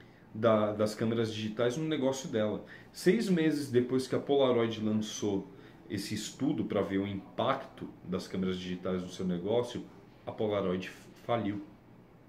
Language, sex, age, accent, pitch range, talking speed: Portuguese, male, 40-59, Brazilian, 110-150 Hz, 135 wpm